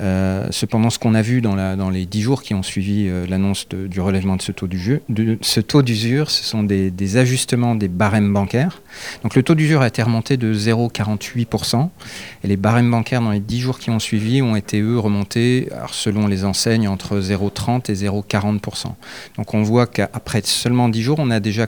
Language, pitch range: French, 100-120 Hz